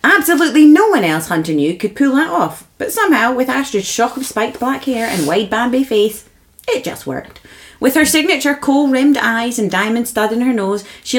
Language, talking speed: English, 205 wpm